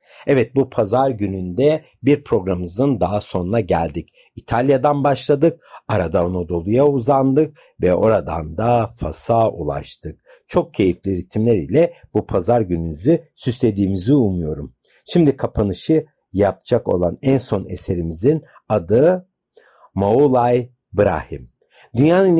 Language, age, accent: Turkish, 60-79, native